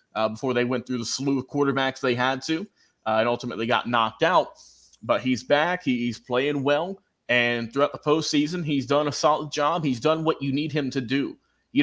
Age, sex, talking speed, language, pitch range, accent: 30-49, male, 215 wpm, English, 125-150 Hz, American